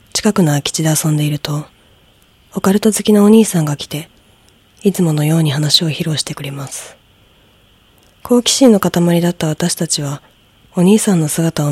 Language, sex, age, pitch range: Japanese, female, 20-39, 135-190 Hz